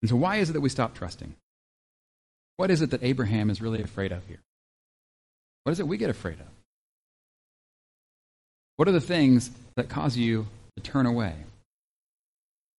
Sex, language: male, English